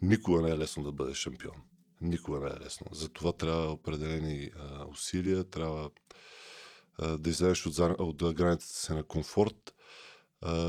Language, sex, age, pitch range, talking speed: Bulgarian, male, 20-39, 80-95 Hz, 165 wpm